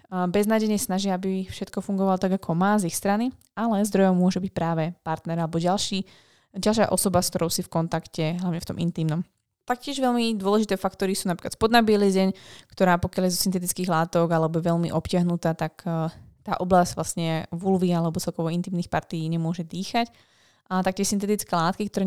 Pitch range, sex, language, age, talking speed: 170-200 Hz, female, Slovak, 20-39, 175 wpm